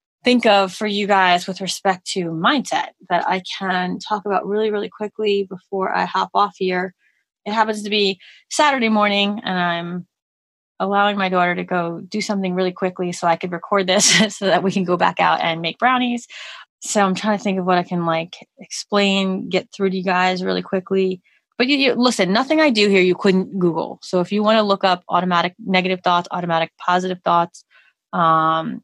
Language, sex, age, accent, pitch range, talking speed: English, female, 20-39, American, 175-210 Hz, 200 wpm